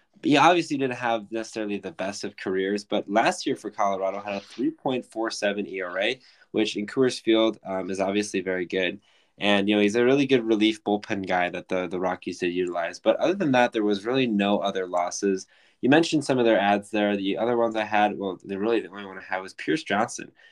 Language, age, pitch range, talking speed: English, 10-29, 95-115 Hz, 220 wpm